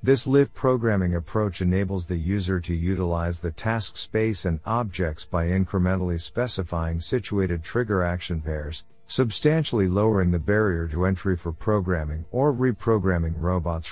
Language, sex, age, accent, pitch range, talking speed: English, male, 50-69, American, 85-115 Hz, 140 wpm